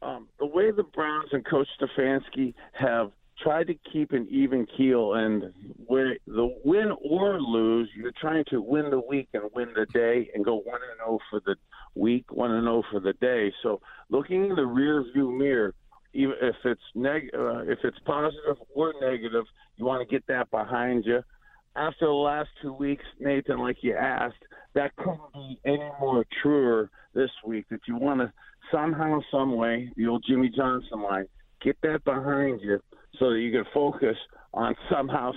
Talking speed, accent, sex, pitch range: 180 wpm, American, male, 120-150 Hz